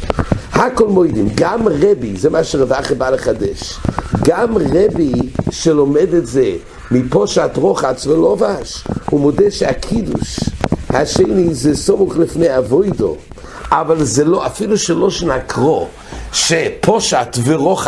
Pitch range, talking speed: 120-185 Hz, 115 wpm